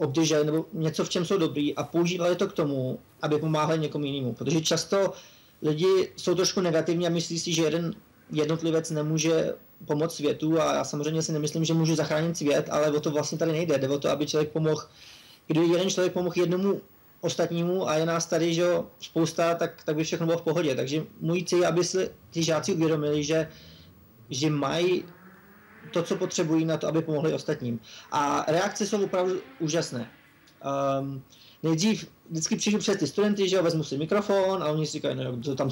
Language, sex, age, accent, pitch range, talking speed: Czech, male, 20-39, native, 150-180 Hz, 195 wpm